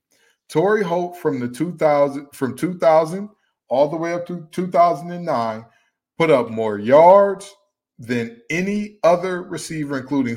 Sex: male